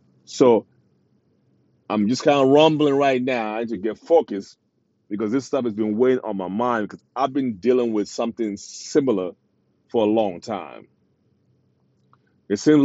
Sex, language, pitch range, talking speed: male, English, 100-130 Hz, 165 wpm